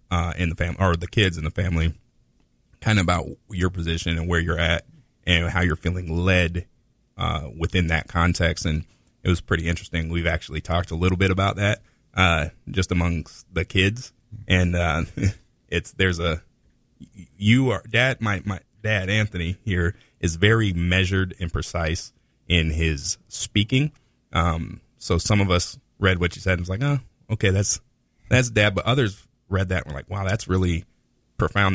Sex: male